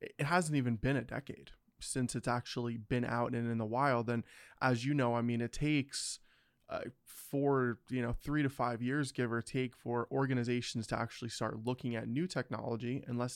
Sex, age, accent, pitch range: male, 20-39, American, 115-130 Hz